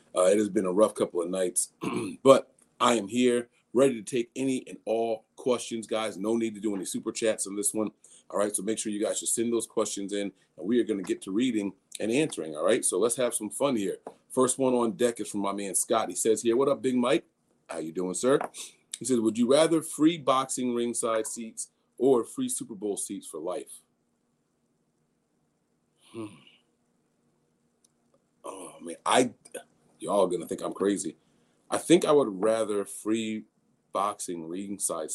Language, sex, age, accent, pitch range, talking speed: English, male, 40-59, American, 105-130 Hz, 195 wpm